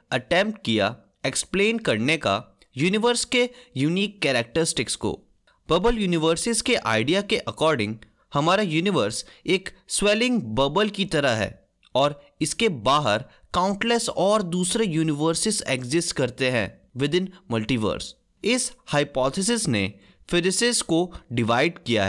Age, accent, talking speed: 20-39, native, 115 wpm